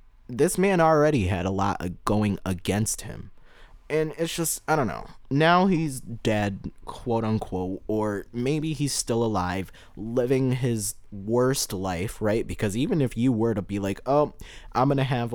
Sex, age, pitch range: male, 20-39, 95-130 Hz